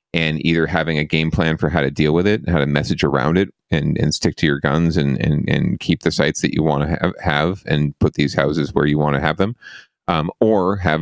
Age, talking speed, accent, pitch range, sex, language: 30-49, 265 wpm, American, 75-85 Hz, male, English